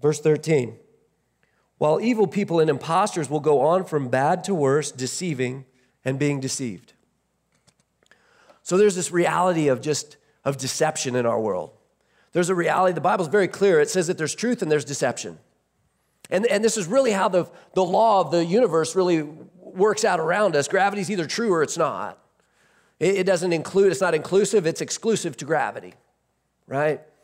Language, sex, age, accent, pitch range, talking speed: English, male, 40-59, American, 150-195 Hz, 175 wpm